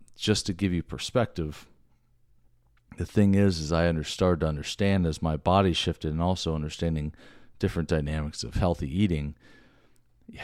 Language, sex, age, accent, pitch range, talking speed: English, male, 40-59, American, 80-100 Hz, 150 wpm